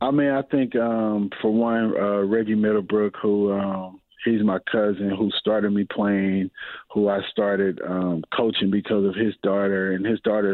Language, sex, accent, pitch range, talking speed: English, male, American, 100-110 Hz, 175 wpm